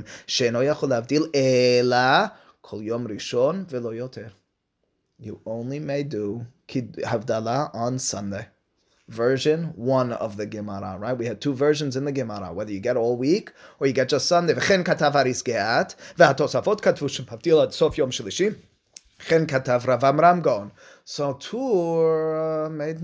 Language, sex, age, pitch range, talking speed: English, male, 20-39, 115-155 Hz, 85 wpm